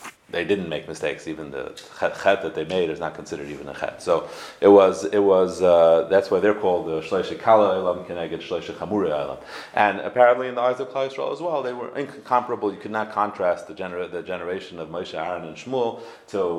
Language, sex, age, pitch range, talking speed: English, male, 30-49, 95-140 Hz, 215 wpm